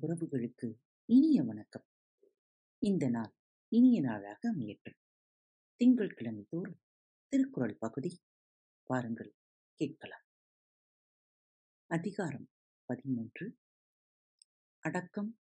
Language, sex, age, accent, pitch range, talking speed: Tamil, female, 50-69, native, 125-215 Hz, 60 wpm